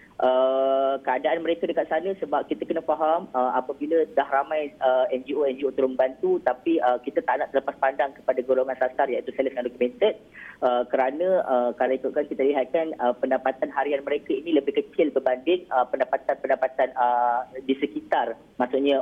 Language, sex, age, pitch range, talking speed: Malay, female, 20-39, 130-150 Hz, 165 wpm